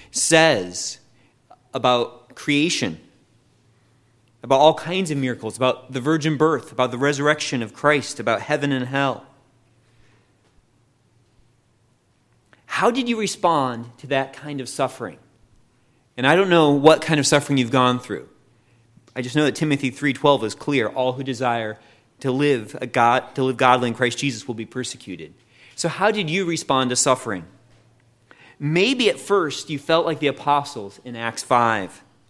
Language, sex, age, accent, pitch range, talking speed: English, male, 30-49, American, 120-160 Hz, 155 wpm